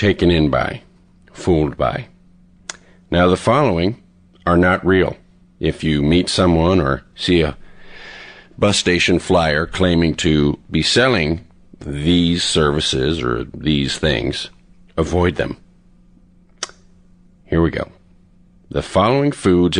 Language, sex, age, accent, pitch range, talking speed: English, male, 50-69, American, 80-95 Hz, 115 wpm